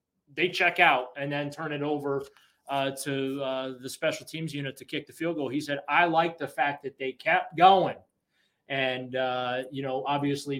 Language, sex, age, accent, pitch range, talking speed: English, male, 30-49, American, 135-175 Hz, 200 wpm